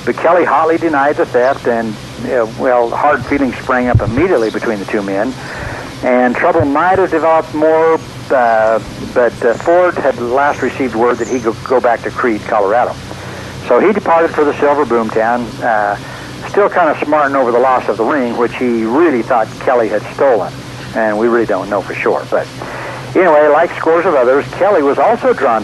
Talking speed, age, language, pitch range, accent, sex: 200 wpm, 60-79, English, 115-145 Hz, American, male